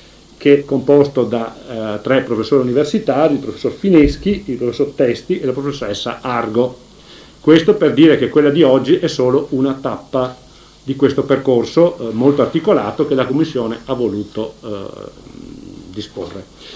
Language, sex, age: Italian, male, 50-69